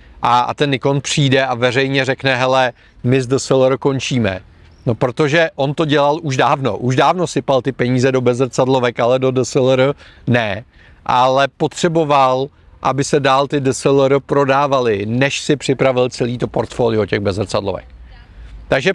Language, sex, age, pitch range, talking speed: Czech, male, 40-59, 125-150 Hz, 160 wpm